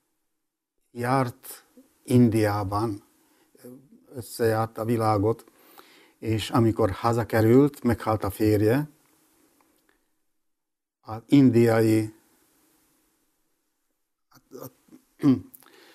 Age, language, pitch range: 60-79, Hungarian, 110-150 Hz